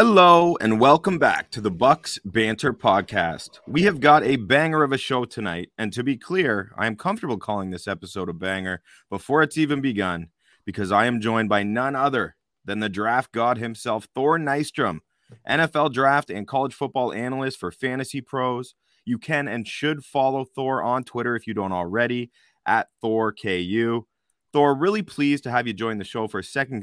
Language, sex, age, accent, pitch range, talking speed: English, male, 30-49, American, 100-135 Hz, 185 wpm